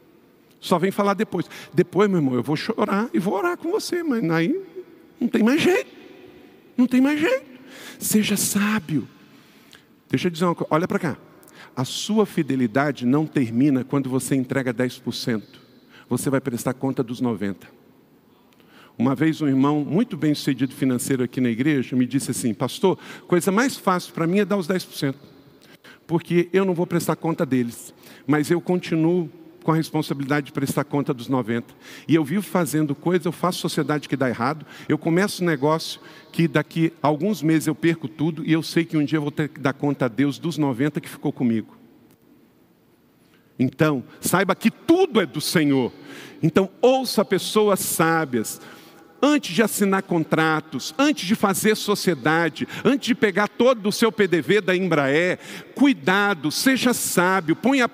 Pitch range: 150-230 Hz